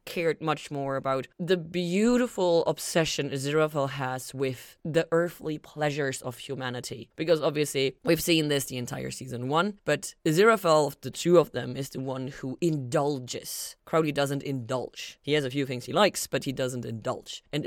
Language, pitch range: English, 135-175 Hz